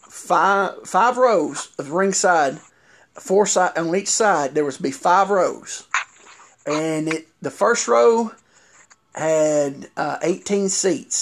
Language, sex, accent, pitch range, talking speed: English, male, American, 150-195 Hz, 130 wpm